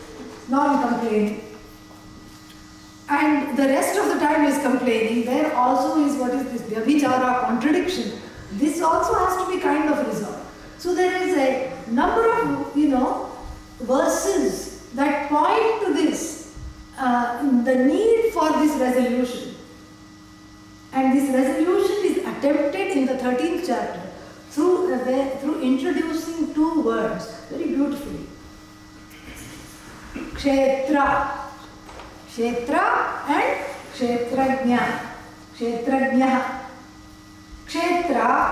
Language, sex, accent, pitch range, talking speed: English, female, Indian, 235-300 Hz, 105 wpm